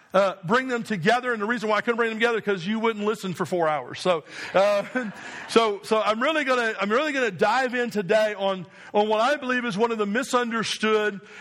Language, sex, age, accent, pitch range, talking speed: English, male, 40-59, American, 205-245 Hz, 225 wpm